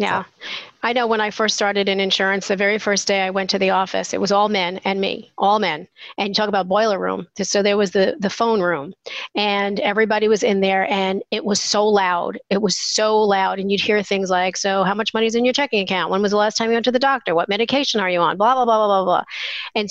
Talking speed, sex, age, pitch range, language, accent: 270 wpm, female, 40-59, 190-215 Hz, English, American